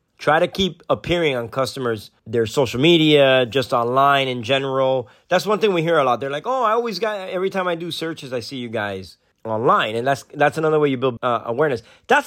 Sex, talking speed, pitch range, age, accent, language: male, 225 wpm, 120-150 Hz, 30-49, American, English